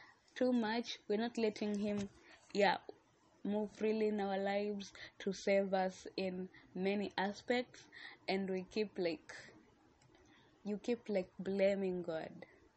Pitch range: 185-215 Hz